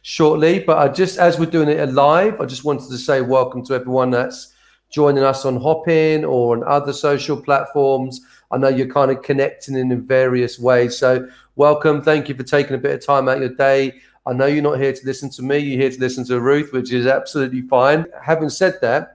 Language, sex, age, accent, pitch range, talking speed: English, male, 40-59, British, 130-155 Hz, 225 wpm